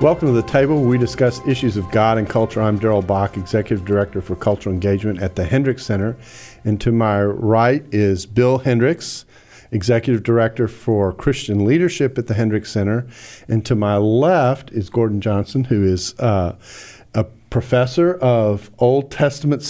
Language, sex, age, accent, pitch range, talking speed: English, male, 50-69, American, 105-130 Hz, 170 wpm